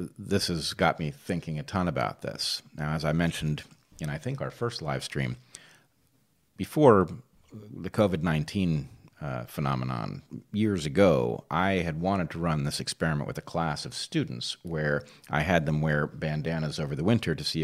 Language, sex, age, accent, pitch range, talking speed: English, male, 40-59, American, 75-95 Hz, 165 wpm